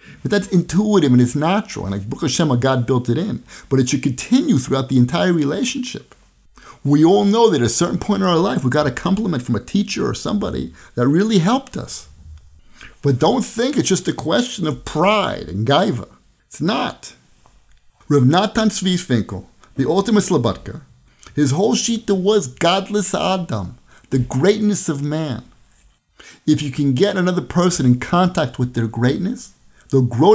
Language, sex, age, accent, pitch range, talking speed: English, male, 50-69, American, 130-195 Hz, 175 wpm